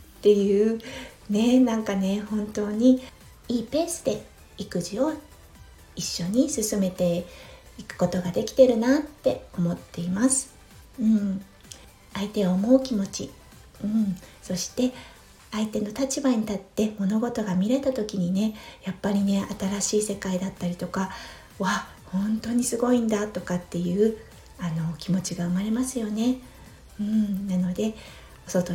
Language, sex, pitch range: Japanese, female, 190-250 Hz